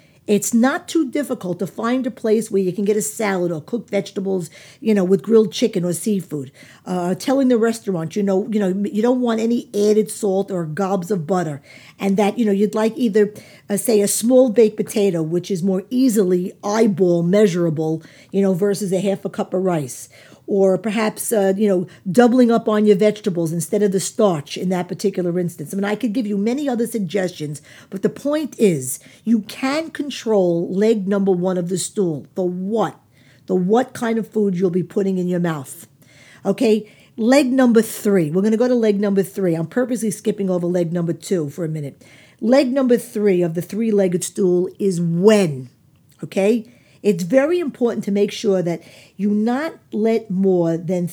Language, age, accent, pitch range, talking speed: English, 50-69, American, 180-225 Hz, 195 wpm